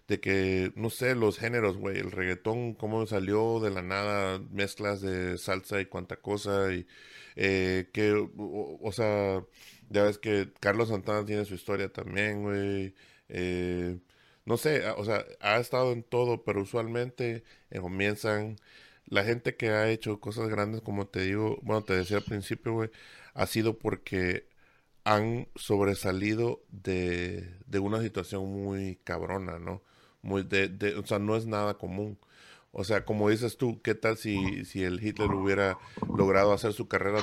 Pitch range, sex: 95-110 Hz, male